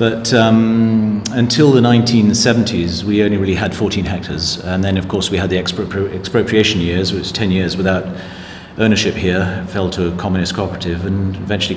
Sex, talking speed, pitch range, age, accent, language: male, 185 wpm, 90-110 Hz, 40-59, British, English